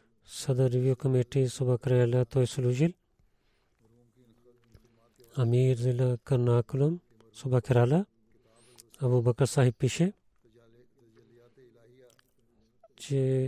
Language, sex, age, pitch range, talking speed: Bulgarian, male, 40-59, 115-130 Hz, 75 wpm